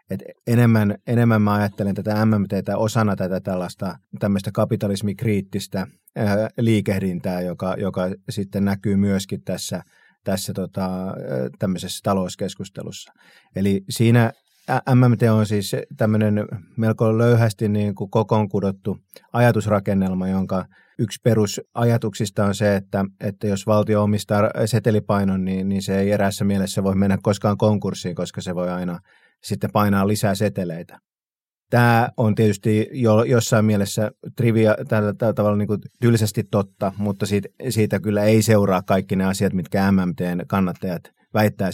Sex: male